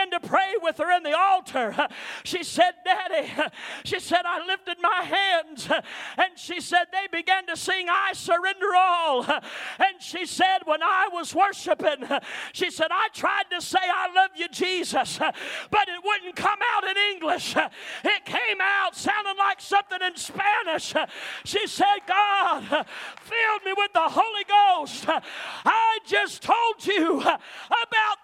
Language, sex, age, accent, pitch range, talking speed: English, male, 40-59, American, 310-400 Hz, 155 wpm